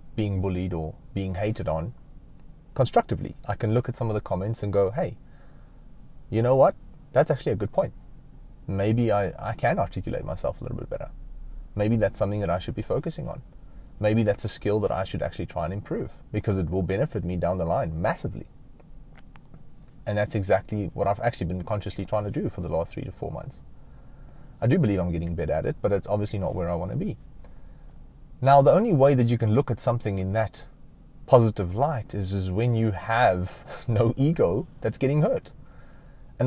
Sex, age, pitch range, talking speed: male, 30-49, 100-135 Hz, 205 wpm